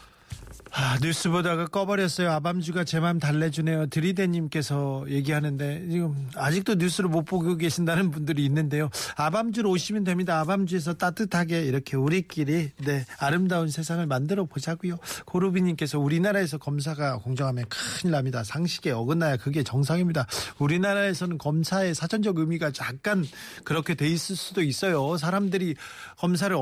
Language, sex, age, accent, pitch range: Korean, male, 40-59, native, 150-190 Hz